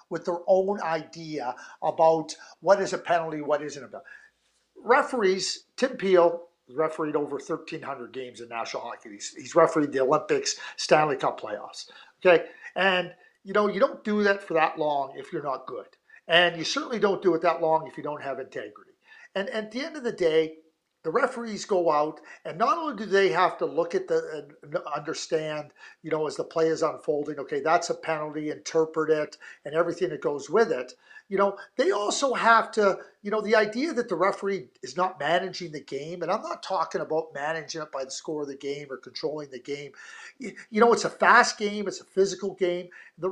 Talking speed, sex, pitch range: 205 wpm, male, 160-220 Hz